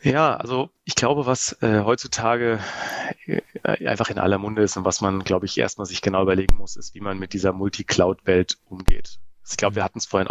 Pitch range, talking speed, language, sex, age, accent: 95-110 Hz, 210 wpm, German, male, 30-49, German